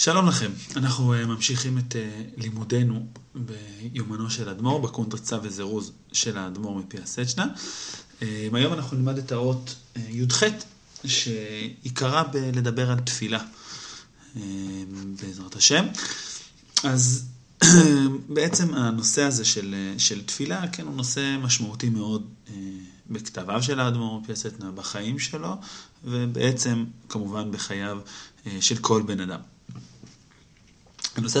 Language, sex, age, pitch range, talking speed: Hebrew, male, 30-49, 105-130 Hz, 105 wpm